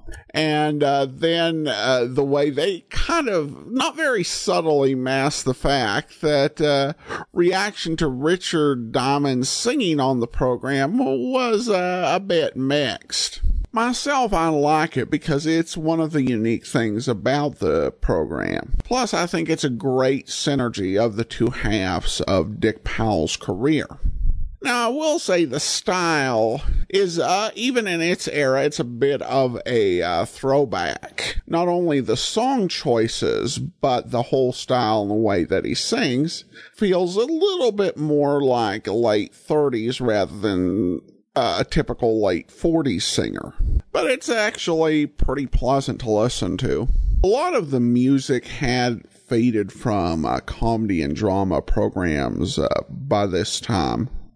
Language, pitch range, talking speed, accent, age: English, 120-165 Hz, 150 wpm, American, 50-69